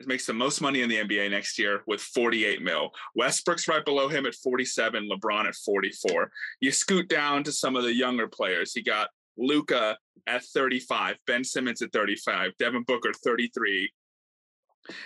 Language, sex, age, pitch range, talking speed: English, male, 30-49, 125-155 Hz, 170 wpm